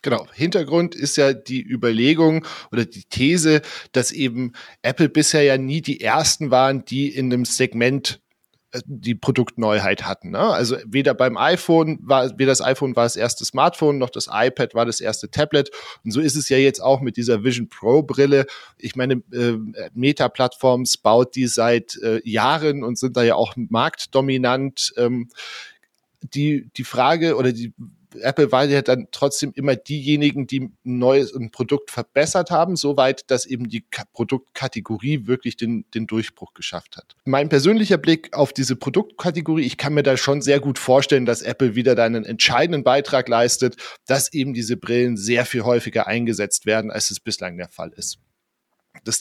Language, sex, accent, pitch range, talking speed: German, male, German, 120-145 Hz, 165 wpm